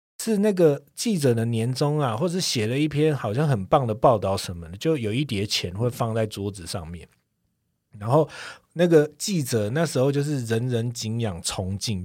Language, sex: Chinese, male